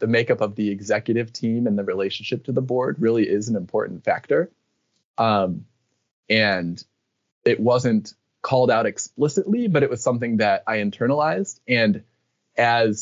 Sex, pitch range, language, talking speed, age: male, 100-120 Hz, English, 150 wpm, 20-39